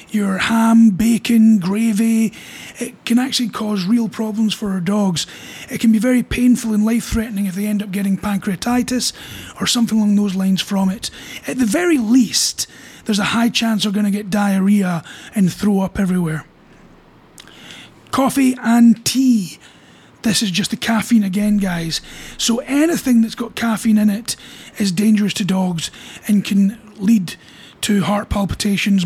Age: 30-49